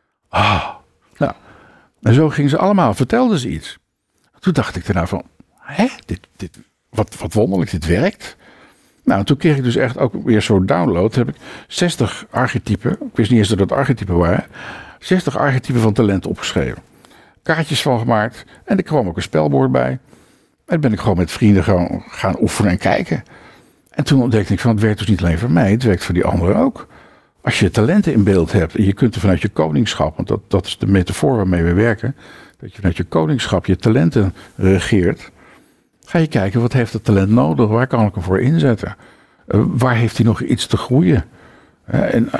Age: 60-79